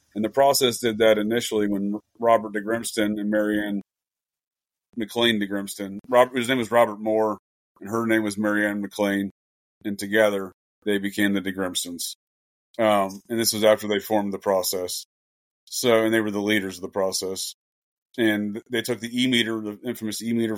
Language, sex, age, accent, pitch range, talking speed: English, male, 30-49, American, 100-115 Hz, 170 wpm